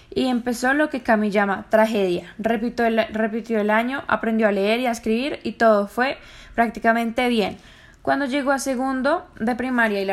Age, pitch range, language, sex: 10-29, 205-240 Hz, Spanish, female